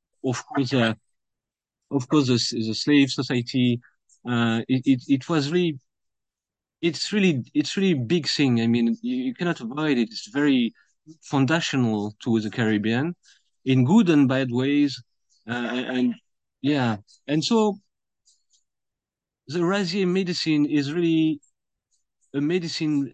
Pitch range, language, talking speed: 120-160 Hz, English, 130 wpm